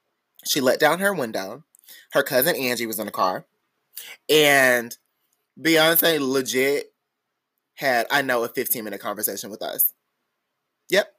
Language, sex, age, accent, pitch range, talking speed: English, male, 20-39, American, 140-220 Hz, 130 wpm